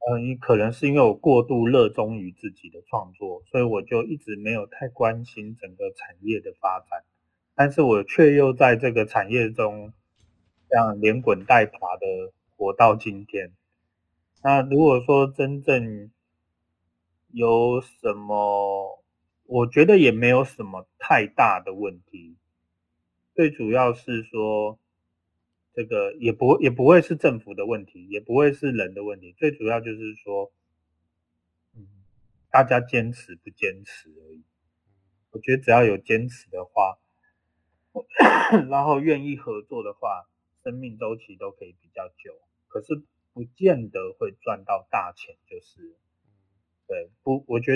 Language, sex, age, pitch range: Chinese, male, 30-49, 95-140 Hz